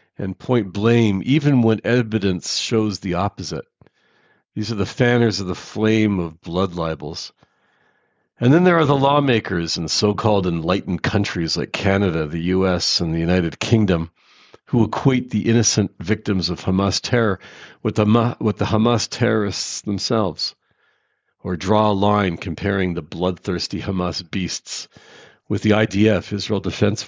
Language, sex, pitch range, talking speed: English, male, 95-120 Hz, 150 wpm